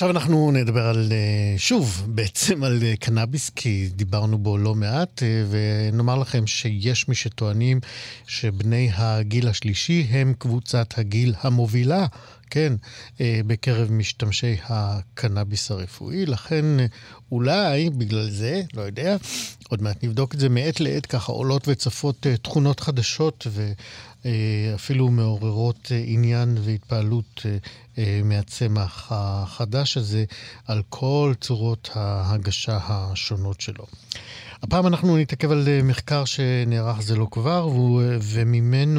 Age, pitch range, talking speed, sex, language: 50-69, 110-135 Hz, 110 wpm, male, Hebrew